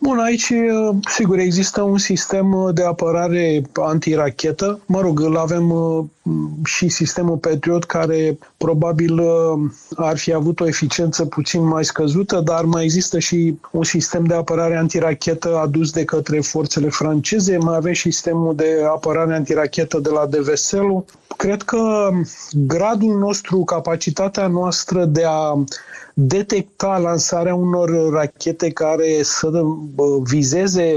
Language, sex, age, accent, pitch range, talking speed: Romanian, male, 30-49, native, 155-180 Hz, 125 wpm